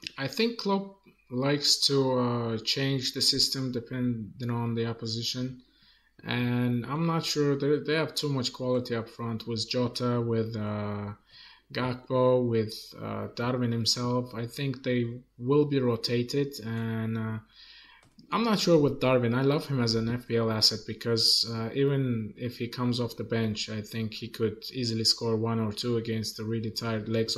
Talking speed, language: 165 wpm, English